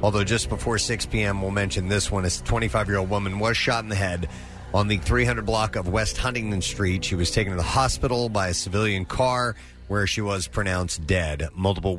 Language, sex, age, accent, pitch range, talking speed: English, male, 30-49, American, 95-115 Hz, 205 wpm